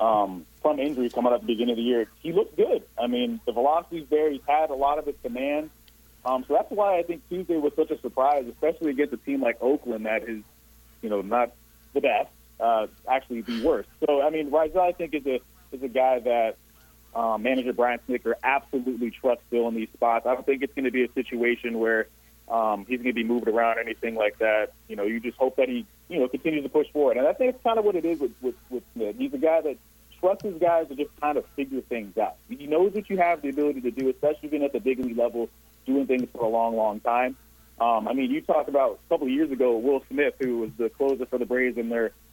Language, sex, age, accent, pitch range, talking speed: English, male, 40-59, American, 120-160 Hz, 260 wpm